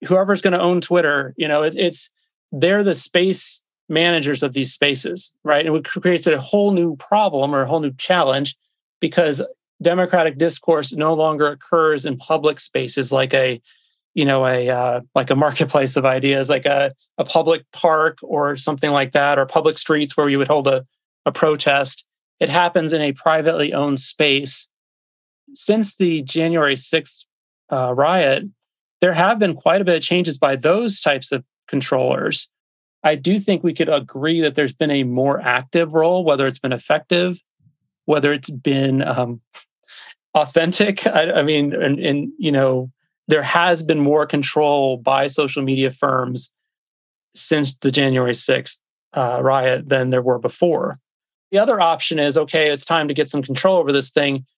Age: 30-49